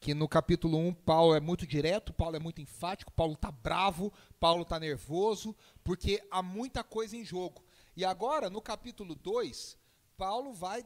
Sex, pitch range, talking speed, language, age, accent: male, 165-220 Hz, 170 wpm, Portuguese, 40-59, Brazilian